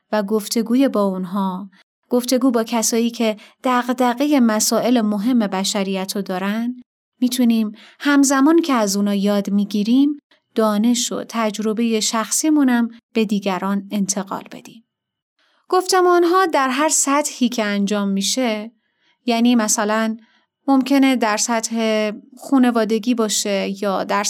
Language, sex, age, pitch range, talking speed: Persian, female, 30-49, 210-260 Hz, 110 wpm